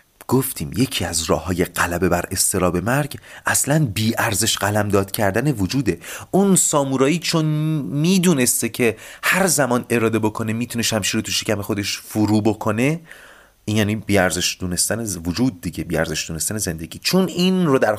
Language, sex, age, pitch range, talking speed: Persian, male, 30-49, 90-130 Hz, 155 wpm